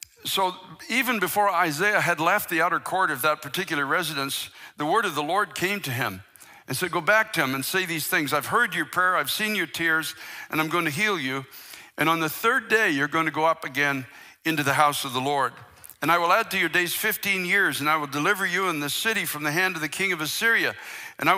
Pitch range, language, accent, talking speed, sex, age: 155-190 Hz, English, American, 250 wpm, male, 60-79